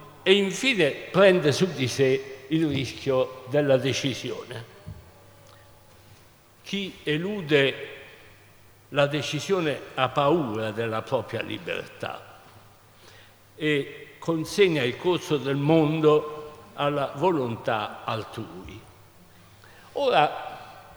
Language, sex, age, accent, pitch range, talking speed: Italian, male, 60-79, native, 110-165 Hz, 85 wpm